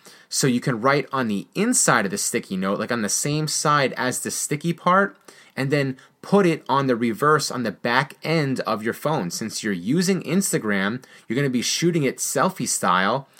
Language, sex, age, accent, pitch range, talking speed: English, male, 30-49, American, 120-155 Hz, 200 wpm